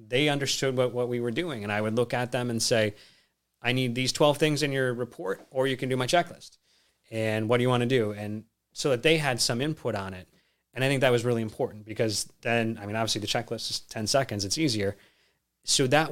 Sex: male